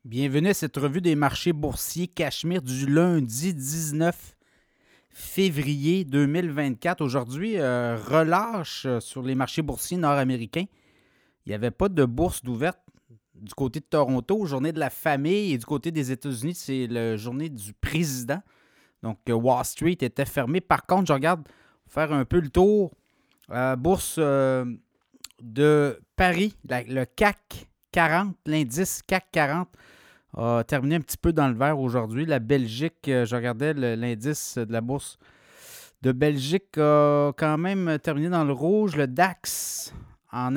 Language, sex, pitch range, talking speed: French, male, 125-165 Hz, 155 wpm